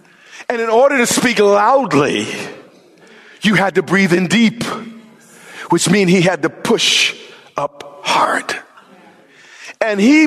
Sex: male